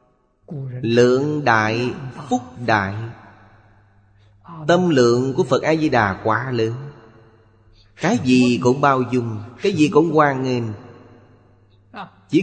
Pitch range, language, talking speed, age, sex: 110-140 Hz, Vietnamese, 105 wpm, 30-49, male